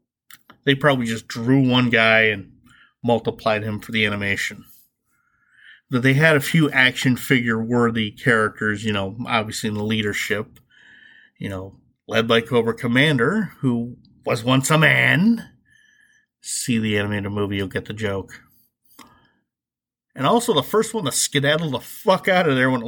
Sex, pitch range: male, 120-200 Hz